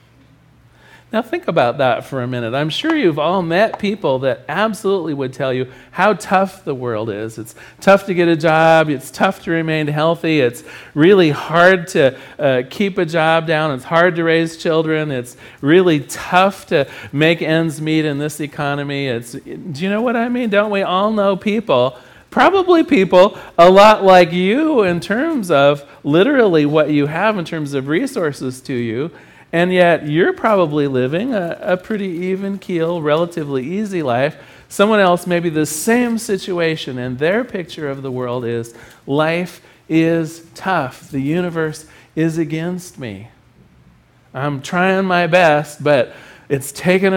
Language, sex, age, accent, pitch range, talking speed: English, male, 40-59, American, 140-190 Hz, 165 wpm